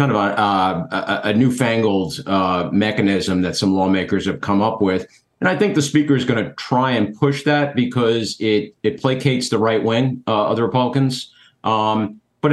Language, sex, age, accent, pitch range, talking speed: English, male, 50-69, American, 110-135 Hz, 190 wpm